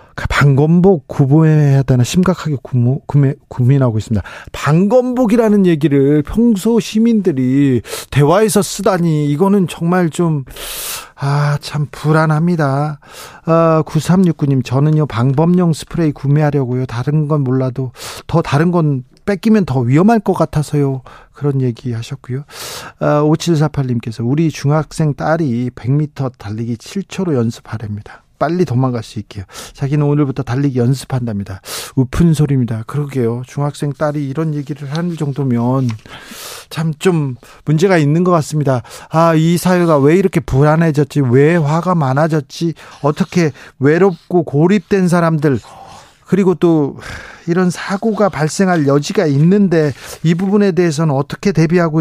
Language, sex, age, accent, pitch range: Korean, male, 40-59, native, 135-170 Hz